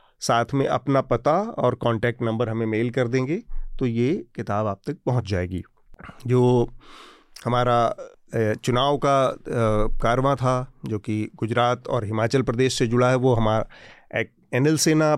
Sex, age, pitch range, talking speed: male, 30-49, 115-130 Hz, 145 wpm